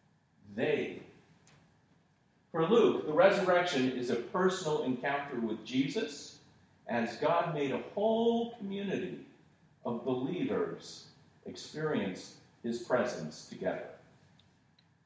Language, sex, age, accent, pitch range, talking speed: English, male, 40-59, American, 120-175 Hz, 90 wpm